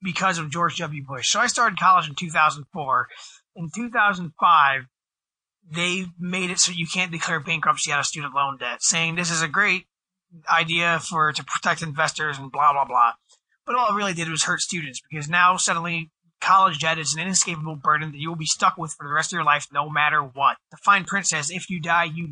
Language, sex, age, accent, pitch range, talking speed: English, male, 20-39, American, 150-185 Hz, 215 wpm